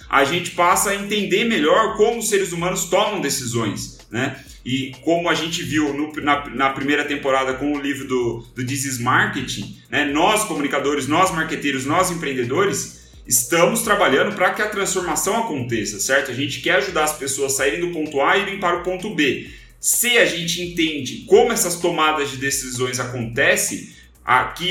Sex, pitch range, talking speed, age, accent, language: male, 135-180 Hz, 175 wpm, 30-49, Brazilian, Portuguese